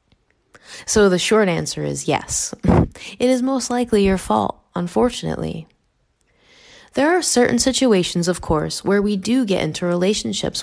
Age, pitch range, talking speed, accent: 20-39, 175-230 Hz, 140 wpm, American